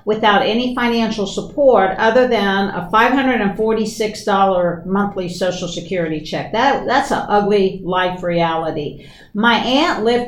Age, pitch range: 60-79, 190-245 Hz